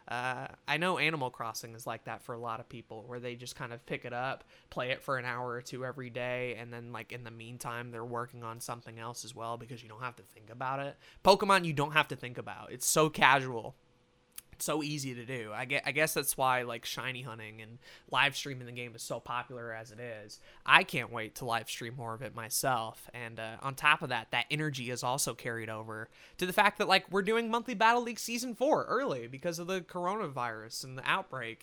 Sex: male